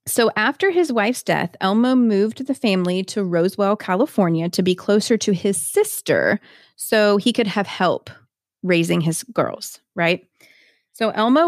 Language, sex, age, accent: English, female, 30-49, American